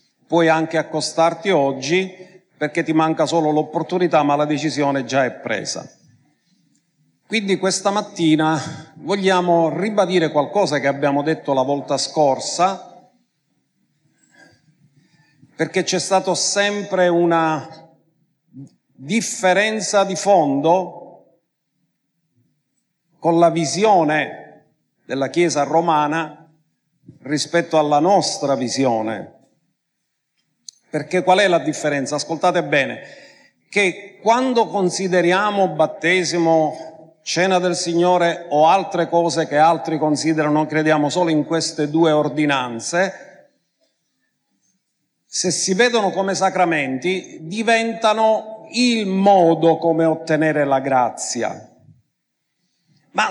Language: Italian